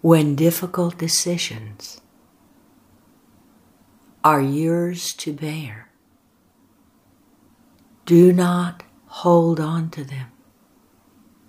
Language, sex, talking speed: English, female, 70 wpm